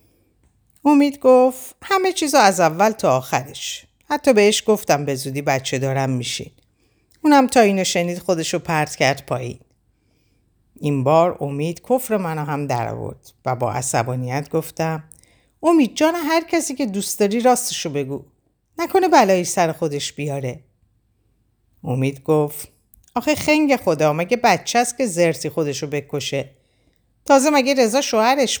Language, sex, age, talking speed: Persian, female, 50-69, 135 wpm